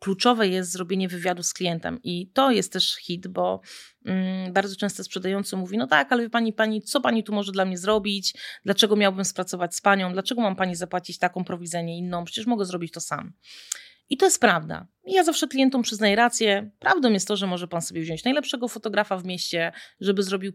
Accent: native